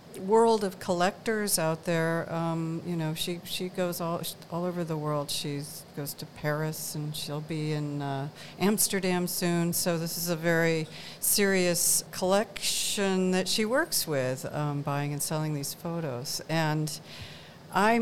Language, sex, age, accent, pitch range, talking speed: English, female, 50-69, American, 145-175 Hz, 155 wpm